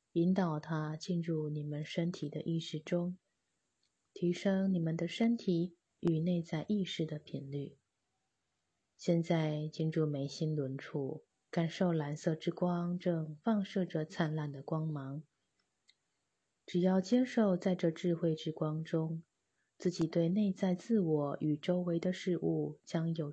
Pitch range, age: 150-180 Hz, 20-39